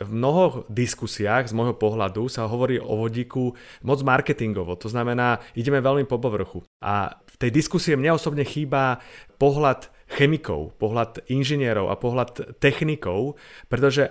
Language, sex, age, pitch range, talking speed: Slovak, male, 30-49, 115-140 Hz, 140 wpm